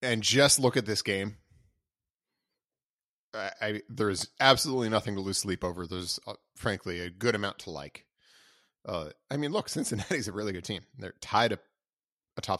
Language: English